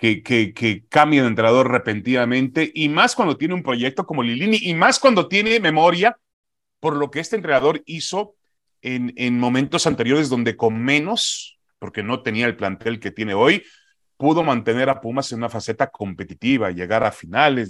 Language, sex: Spanish, male